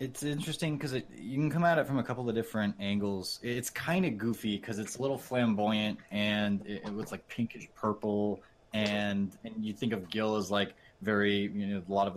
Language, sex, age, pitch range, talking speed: English, male, 20-39, 100-125 Hz, 220 wpm